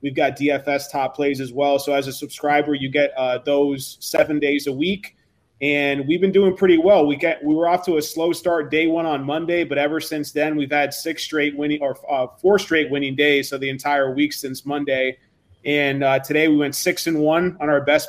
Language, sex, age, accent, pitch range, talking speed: English, male, 20-39, American, 140-155 Hz, 230 wpm